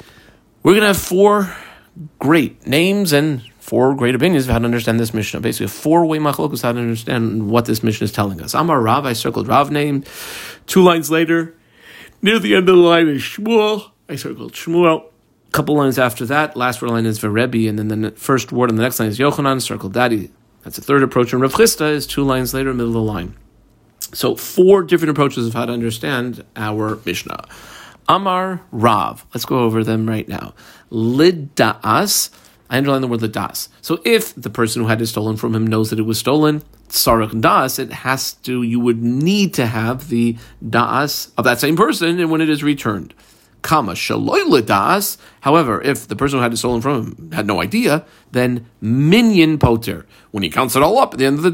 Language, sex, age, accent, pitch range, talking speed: English, male, 40-59, American, 115-155 Hz, 210 wpm